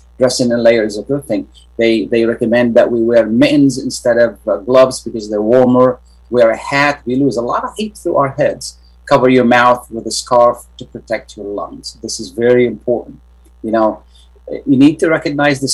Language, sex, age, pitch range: Arabic, male, 30-49, 110-135 Hz